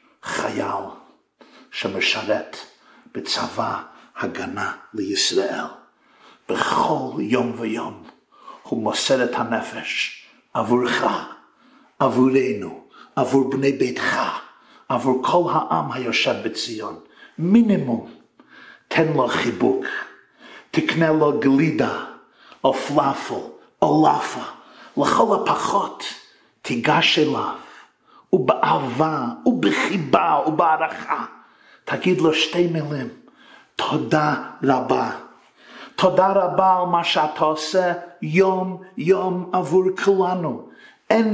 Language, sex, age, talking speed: Hebrew, male, 50-69, 80 wpm